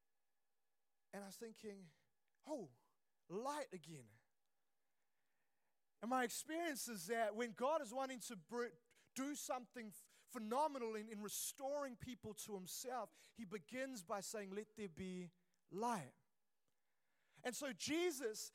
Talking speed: 115 wpm